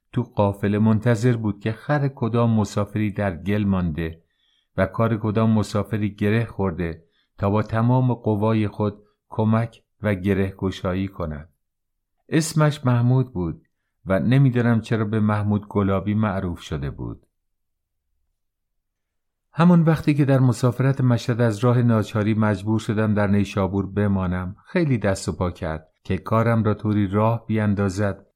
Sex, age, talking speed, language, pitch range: male, 50-69, 135 wpm, English, 100-120 Hz